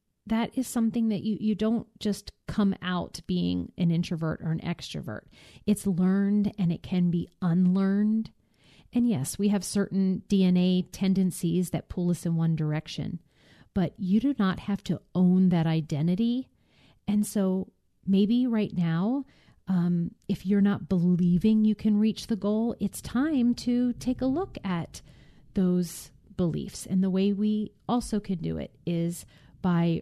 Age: 30-49